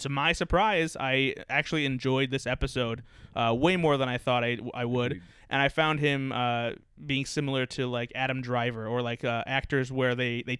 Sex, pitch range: male, 120-140 Hz